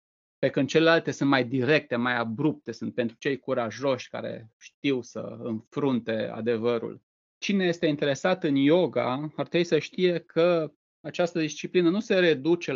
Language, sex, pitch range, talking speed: Romanian, male, 130-175 Hz, 145 wpm